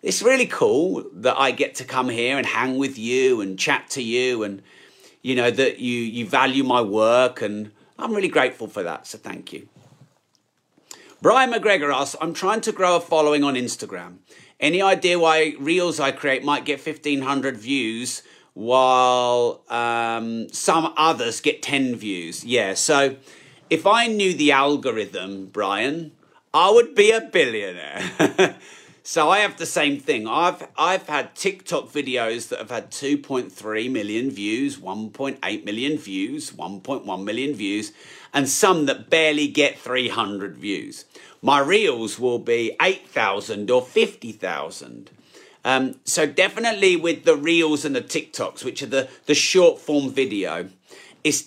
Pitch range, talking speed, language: 125-185 Hz, 150 wpm, English